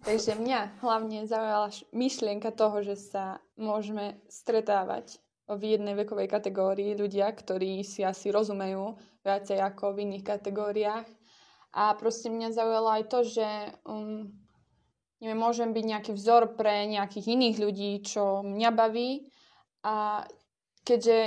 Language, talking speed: Slovak, 125 wpm